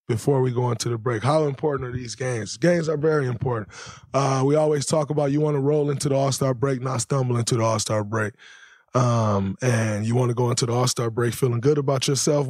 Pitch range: 125-150 Hz